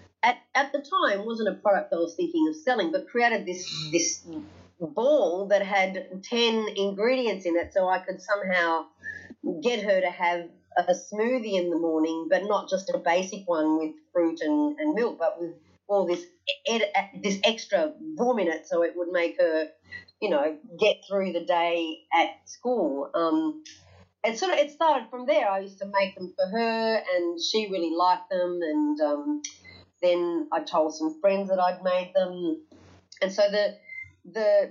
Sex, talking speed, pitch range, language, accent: female, 185 wpm, 175-250 Hz, English, Australian